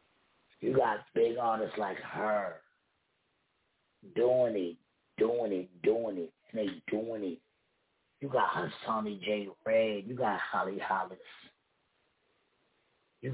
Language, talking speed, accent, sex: English, 115 wpm, American, male